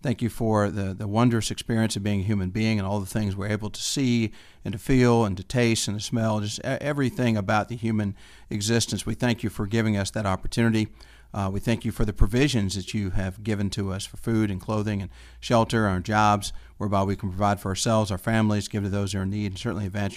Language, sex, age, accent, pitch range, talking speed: English, male, 40-59, American, 100-115 Hz, 245 wpm